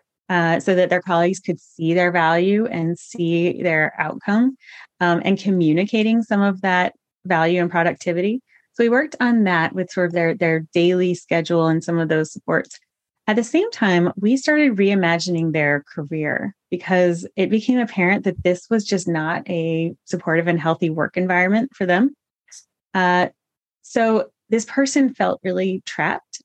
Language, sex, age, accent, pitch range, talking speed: English, female, 30-49, American, 170-200 Hz, 165 wpm